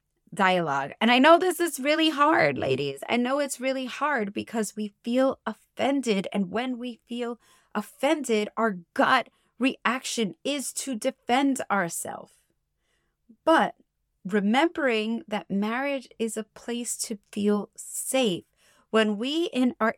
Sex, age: female, 30-49